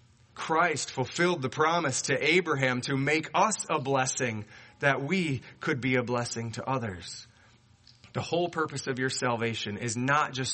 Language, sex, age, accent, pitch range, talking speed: English, male, 30-49, American, 120-170 Hz, 160 wpm